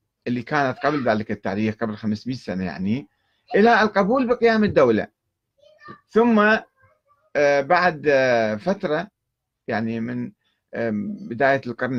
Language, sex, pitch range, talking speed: Arabic, male, 110-150 Hz, 100 wpm